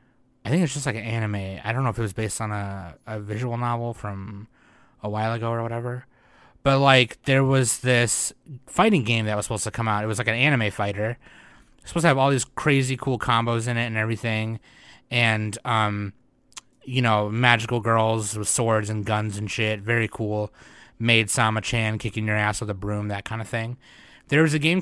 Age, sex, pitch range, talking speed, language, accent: 20-39, male, 105-130 Hz, 215 wpm, English, American